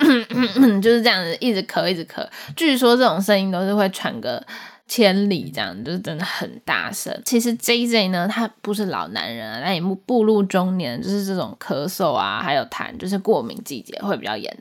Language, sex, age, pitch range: Chinese, female, 10-29, 195-240 Hz